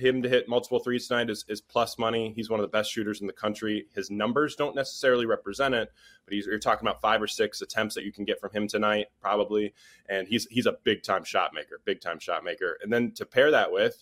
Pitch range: 110-135 Hz